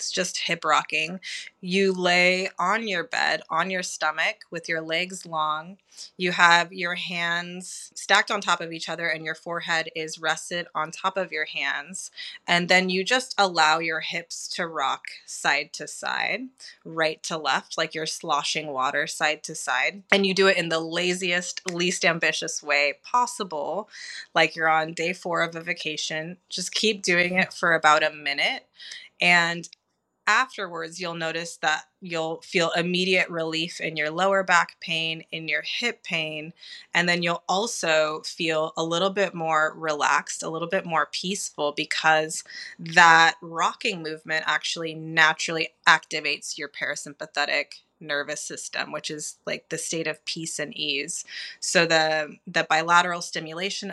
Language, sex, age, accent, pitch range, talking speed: English, female, 20-39, American, 155-180 Hz, 160 wpm